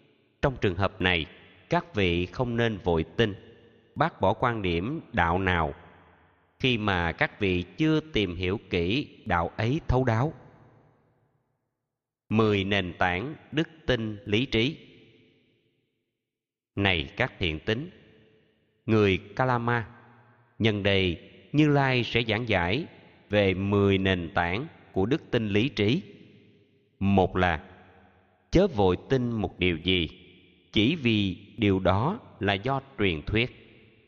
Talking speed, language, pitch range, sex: 130 wpm, Vietnamese, 90-120 Hz, male